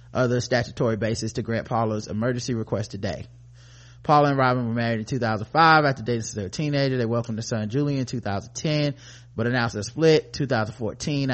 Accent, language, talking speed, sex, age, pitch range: American, English, 175 wpm, male, 30-49, 120-150 Hz